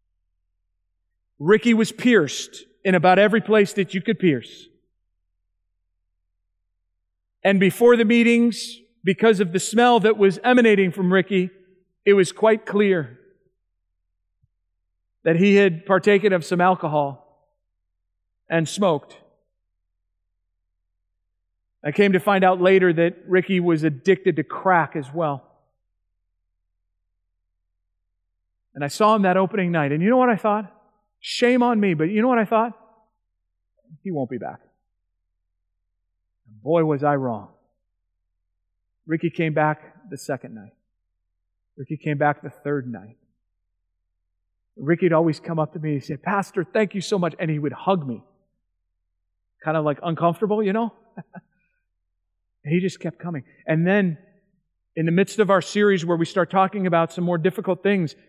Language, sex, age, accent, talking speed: English, male, 40-59, American, 145 wpm